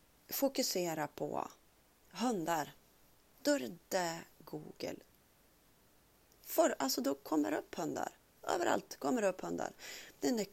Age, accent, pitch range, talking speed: 30-49, native, 155-205 Hz, 110 wpm